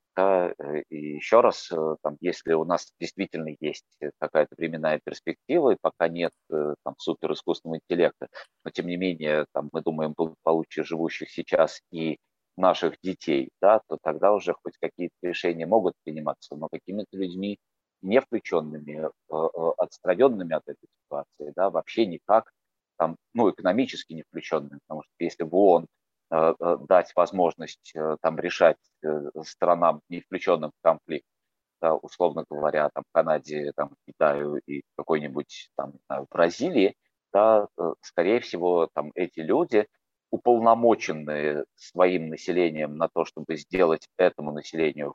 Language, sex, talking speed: Russian, male, 130 wpm